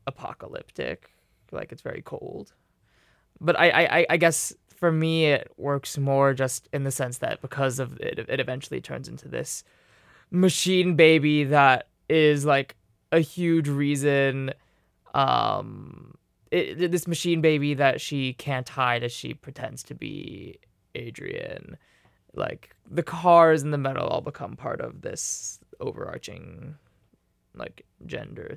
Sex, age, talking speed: male, 20-39, 135 wpm